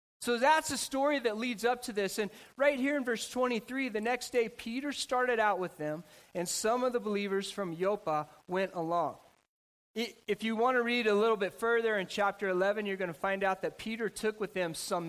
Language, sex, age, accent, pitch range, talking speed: English, male, 30-49, American, 185-240 Hz, 220 wpm